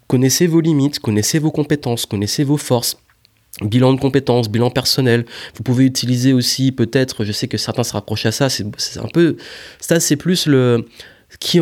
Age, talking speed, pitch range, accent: 20-39, 185 wpm, 110-135 Hz, French